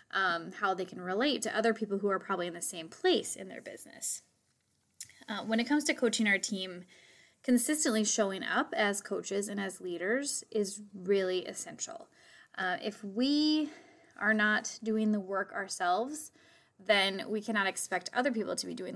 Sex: female